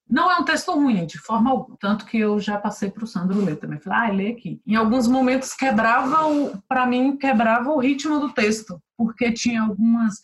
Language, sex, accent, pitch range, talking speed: Portuguese, female, Brazilian, 195-255 Hz, 210 wpm